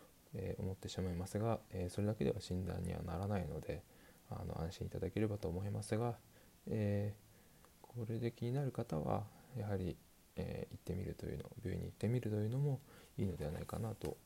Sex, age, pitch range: male, 20-39, 90-110 Hz